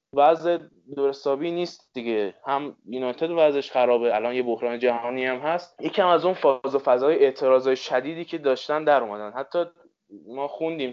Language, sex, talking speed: Persian, male, 160 wpm